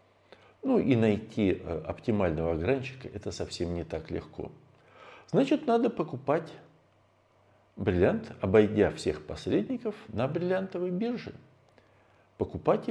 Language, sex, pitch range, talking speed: Russian, male, 95-150 Hz, 100 wpm